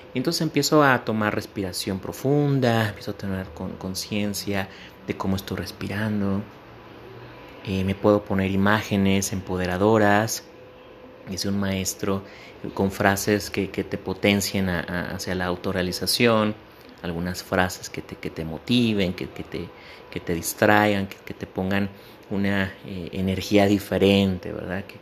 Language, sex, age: Spanish, male, 30-49